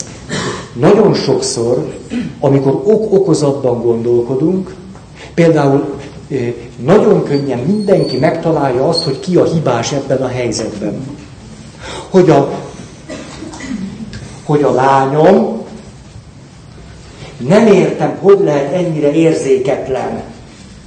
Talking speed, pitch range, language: 80 wpm, 140-205 Hz, Hungarian